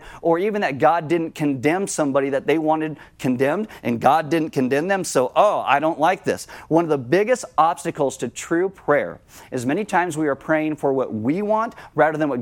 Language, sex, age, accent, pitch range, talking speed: English, male, 40-59, American, 140-185 Hz, 210 wpm